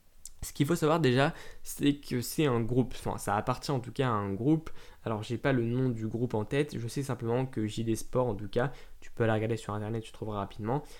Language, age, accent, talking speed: French, 20-39, French, 250 wpm